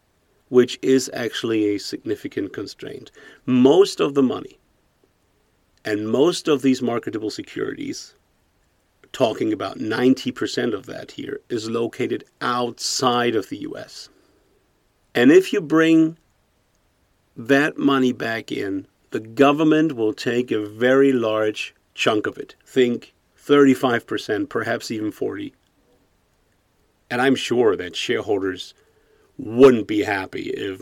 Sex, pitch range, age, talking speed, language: male, 105-145 Hz, 50-69, 115 wpm, English